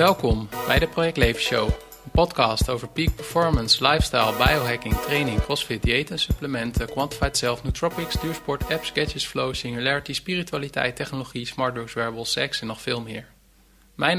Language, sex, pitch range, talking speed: Dutch, male, 115-145 Hz, 150 wpm